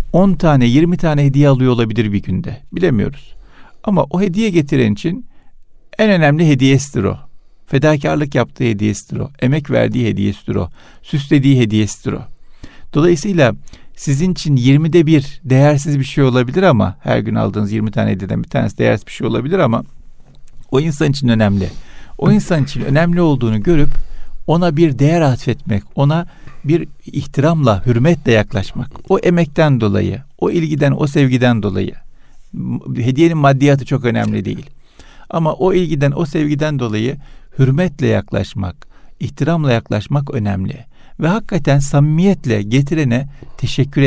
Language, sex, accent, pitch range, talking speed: Turkish, male, native, 110-155 Hz, 140 wpm